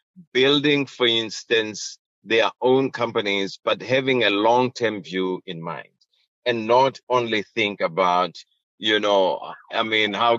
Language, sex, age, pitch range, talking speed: English, male, 50-69, 110-130 Hz, 140 wpm